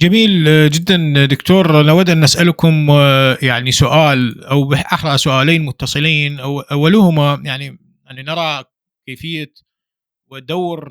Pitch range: 125-165 Hz